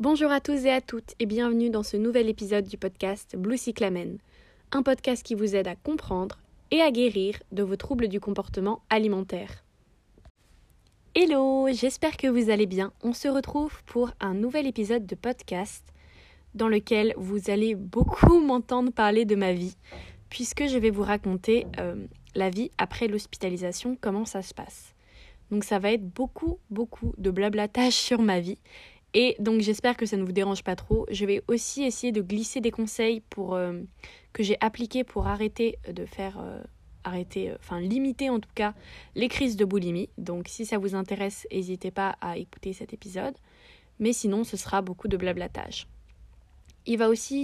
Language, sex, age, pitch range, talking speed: French, female, 20-39, 195-245 Hz, 180 wpm